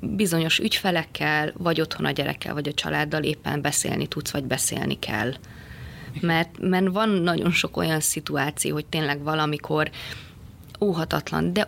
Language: English